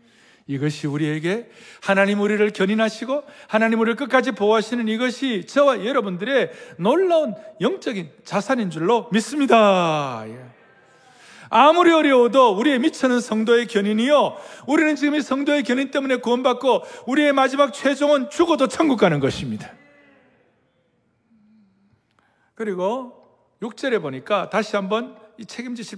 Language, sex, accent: Korean, male, native